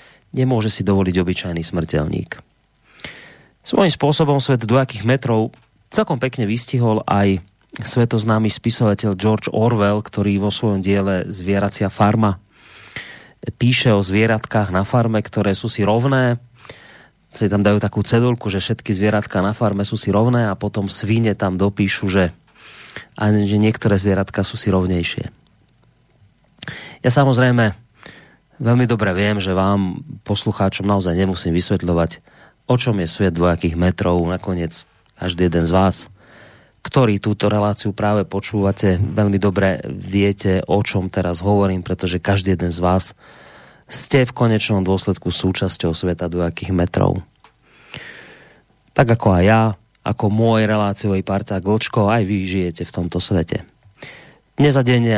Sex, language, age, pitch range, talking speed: male, Slovak, 30-49, 95-110 Hz, 130 wpm